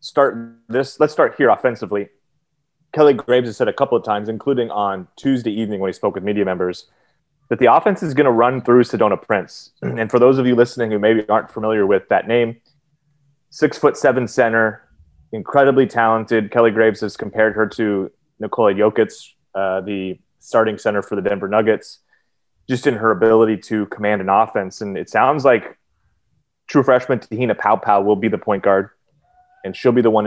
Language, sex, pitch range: English, male, 105-140 Hz